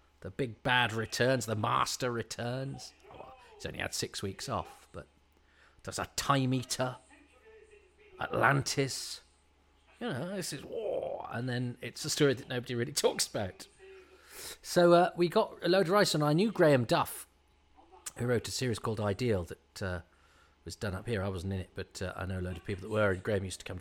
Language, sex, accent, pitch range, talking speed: English, male, British, 95-135 Hz, 195 wpm